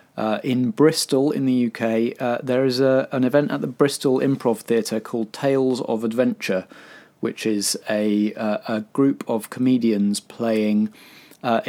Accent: British